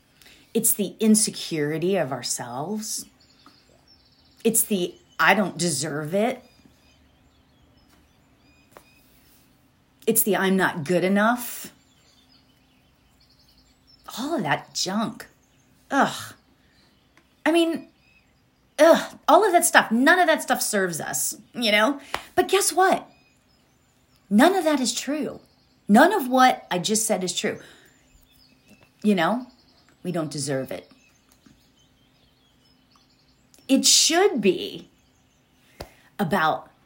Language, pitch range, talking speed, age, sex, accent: English, 155-245 Hz, 105 wpm, 40-59, female, American